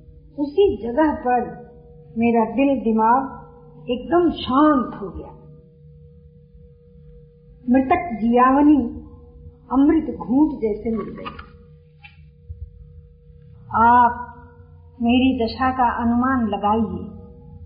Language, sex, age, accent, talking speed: Hindi, female, 50-69, native, 80 wpm